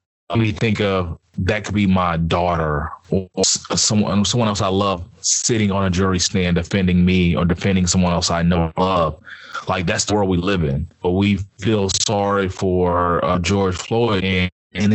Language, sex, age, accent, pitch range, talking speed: English, male, 20-39, American, 90-105 Hz, 185 wpm